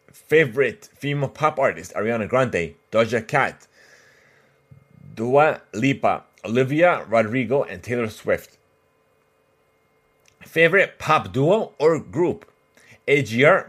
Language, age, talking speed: English, 30-49, 90 wpm